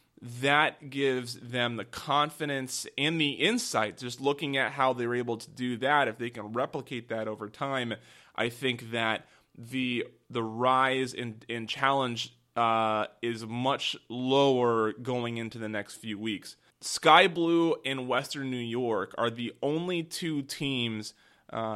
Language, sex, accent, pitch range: English, male, American, 115-135 Hz